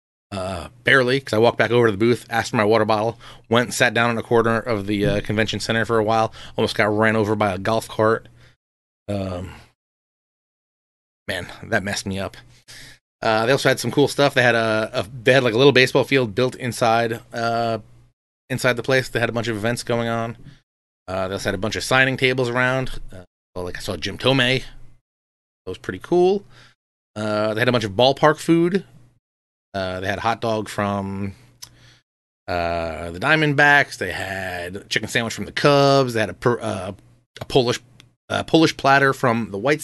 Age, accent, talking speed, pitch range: 30-49, American, 195 wpm, 105-125 Hz